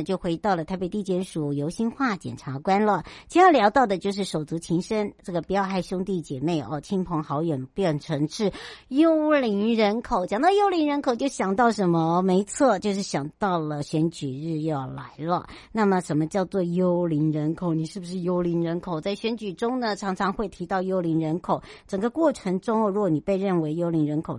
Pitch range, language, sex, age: 160-210 Hz, Chinese, male, 60-79